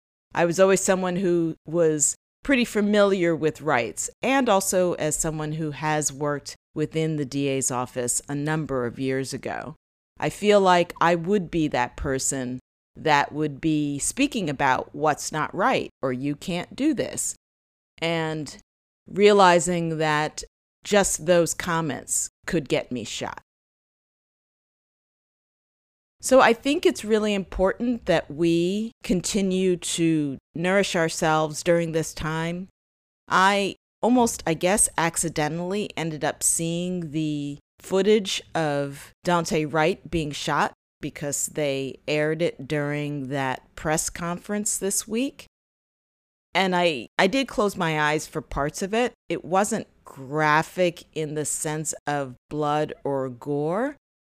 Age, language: 40-59, English